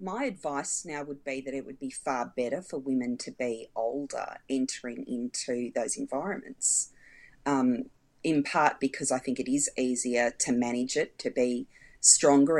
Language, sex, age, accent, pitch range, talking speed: English, female, 30-49, Australian, 135-155 Hz, 165 wpm